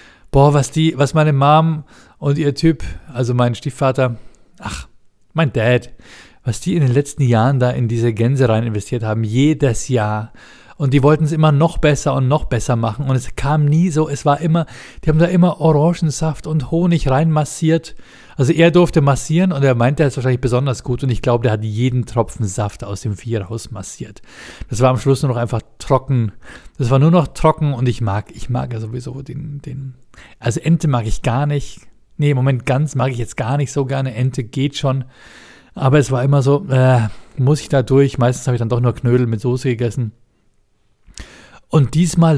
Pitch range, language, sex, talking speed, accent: 115-150 Hz, German, male, 205 wpm, German